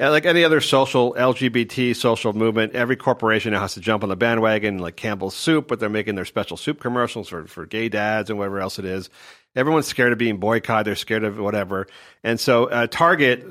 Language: English